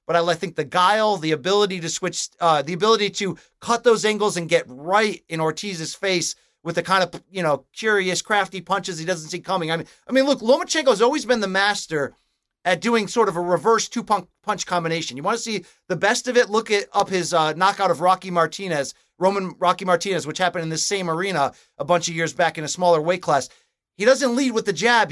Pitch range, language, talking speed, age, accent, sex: 170-215 Hz, English, 230 wpm, 30-49, American, male